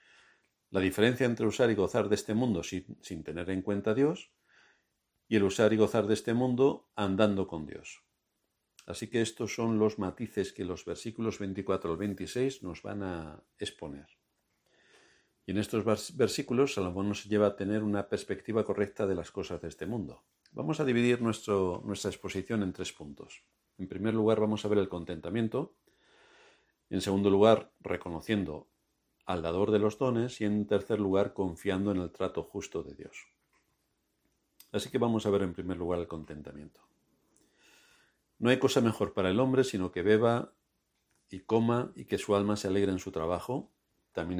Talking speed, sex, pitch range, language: 175 wpm, male, 95-115 Hz, Spanish